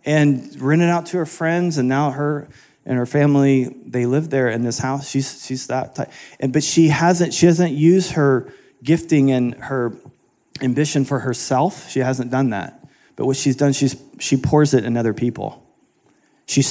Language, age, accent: English, 30-49, American